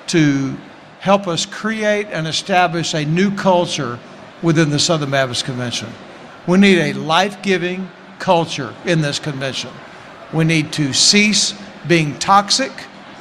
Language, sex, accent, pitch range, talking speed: English, male, American, 160-205 Hz, 125 wpm